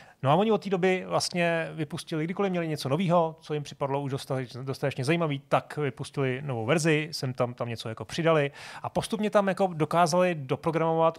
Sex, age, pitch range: male, 30-49, 130-160 Hz